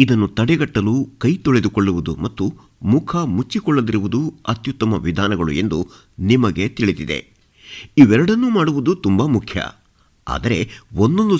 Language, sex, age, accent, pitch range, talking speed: Kannada, male, 50-69, native, 100-140 Hz, 95 wpm